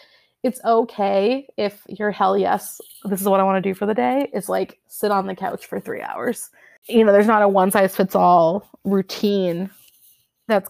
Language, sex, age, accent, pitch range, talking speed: English, female, 20-39, American, 195-220 Hz, 200 wpm